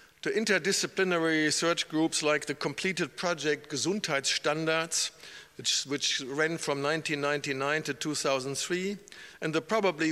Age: 50-69